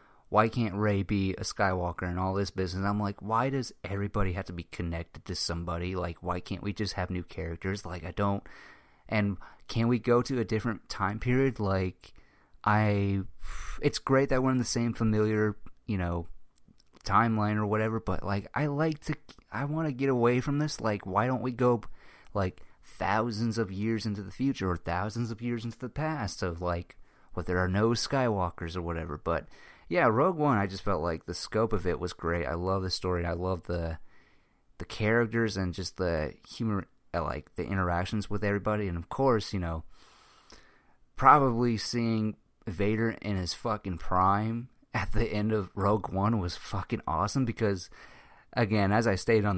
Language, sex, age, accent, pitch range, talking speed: English, male, 30-49, American, 90-115 Hz, 190 wpm